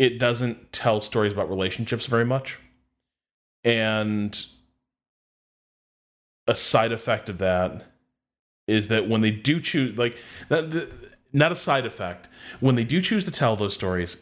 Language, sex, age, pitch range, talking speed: English, male, 20-39, 100-125 Hz, 145 wpm